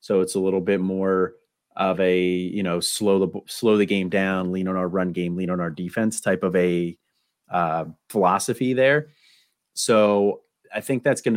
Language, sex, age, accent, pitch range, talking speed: English, male, 30-49, American, 85-105 Hz, 190 wpm